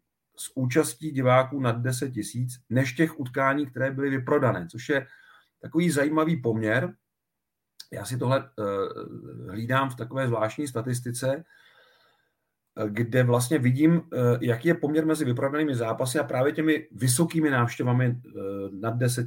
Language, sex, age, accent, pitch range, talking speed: Czech, male, 40-59, native, 115-135 Hz, 135 wpm